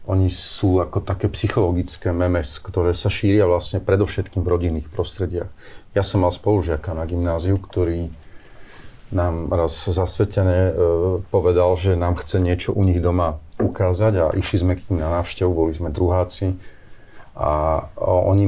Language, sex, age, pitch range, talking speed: Slovak, male, 40-59, 90-110 Hz, 145 wpm